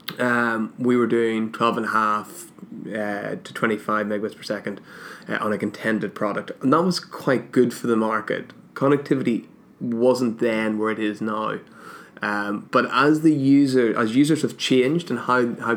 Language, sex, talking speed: English, male, 180 wpm